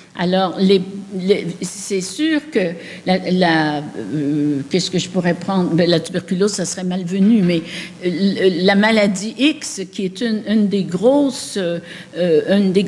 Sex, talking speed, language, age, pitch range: female, 120 wpm, French, 60-79, 180-230 Hz